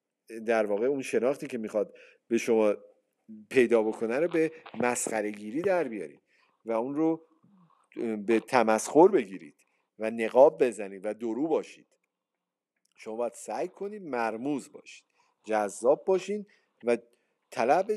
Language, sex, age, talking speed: Persian, male, 50-69, 125 wpm